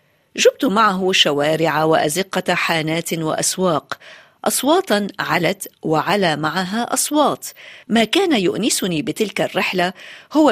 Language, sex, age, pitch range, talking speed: Arabic, female, 50-69, 170-220 Hz, 95 wpm